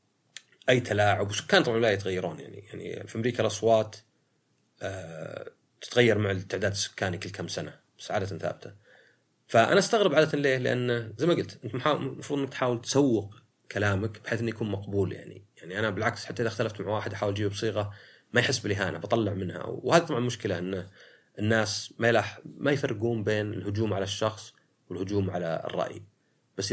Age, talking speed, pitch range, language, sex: 30-49, 165 wpm, 100-120 Hz, Arabic, male